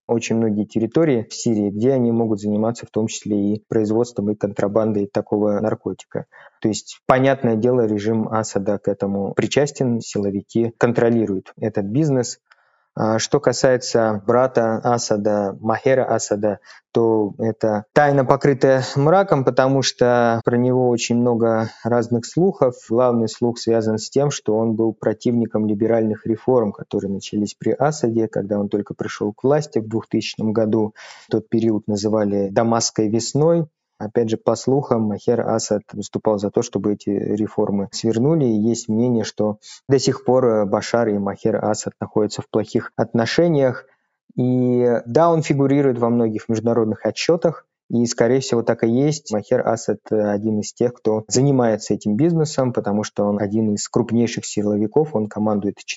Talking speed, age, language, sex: 150 wpm, 20-39, Russian, male